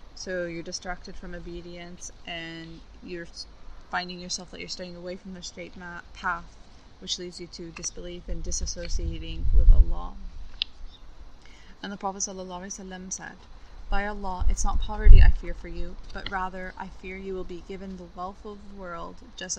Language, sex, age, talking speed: English, female, 20-39, 160 wpm